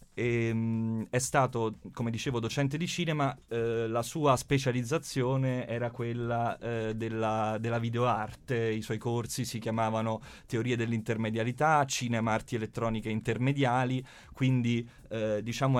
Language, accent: Italian, native